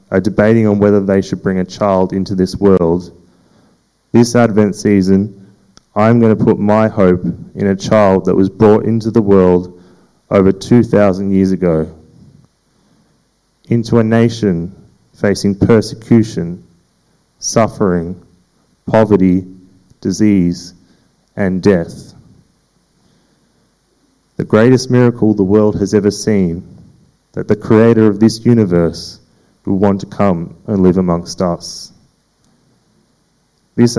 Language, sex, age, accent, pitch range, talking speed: English, male, 30-49, Australian, 95-110 Hz, 120 wpm